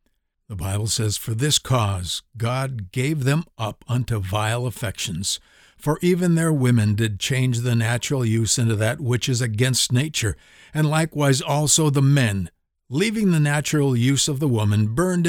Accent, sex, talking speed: American, male, 160 wpm